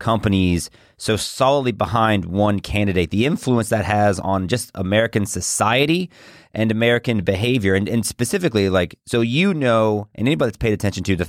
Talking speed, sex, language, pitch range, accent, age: 165 wpm, male, English, 95-115 Hz, American, 30-49